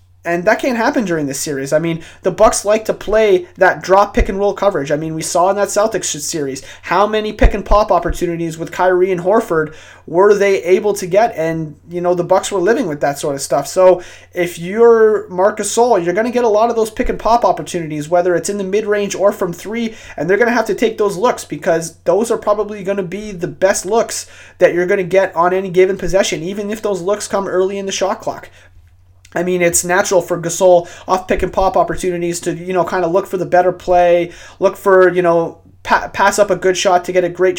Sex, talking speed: male, 245 wpm